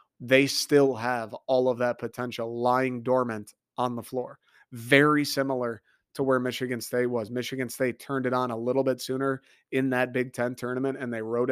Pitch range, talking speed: 120-135 Hz, 190 wpm